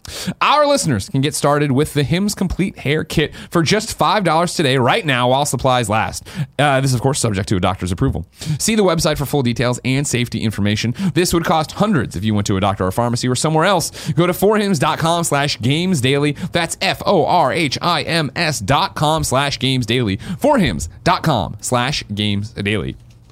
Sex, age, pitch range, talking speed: male, 30-49, 115-165 Hz, 180 wpm